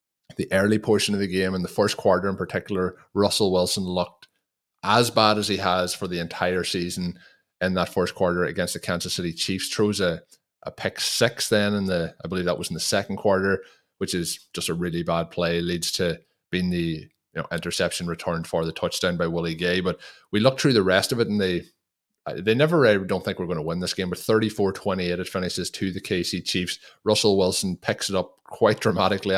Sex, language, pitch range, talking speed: male, English, 85-100 Hz, 215 wpm